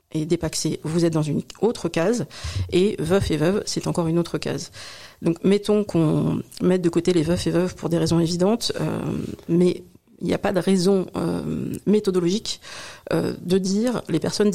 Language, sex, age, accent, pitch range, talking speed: French, female, 40-59, French, 170-195 Hz, 190 wpm